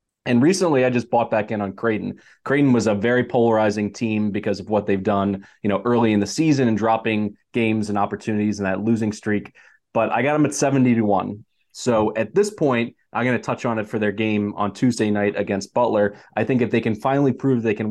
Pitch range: 100-115 Hz